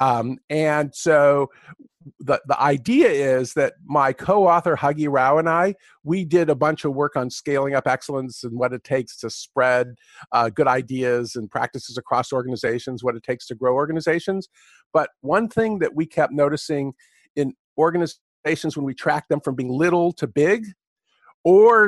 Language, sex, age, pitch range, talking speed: English, male, 50-69, 145-195 Hz, 170 wpm